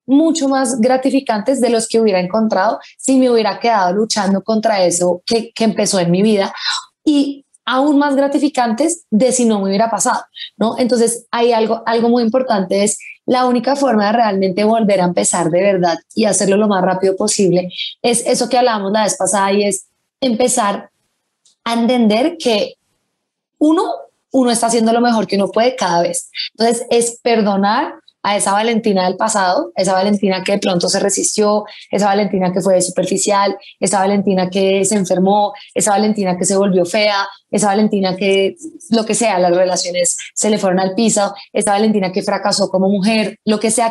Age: 20-39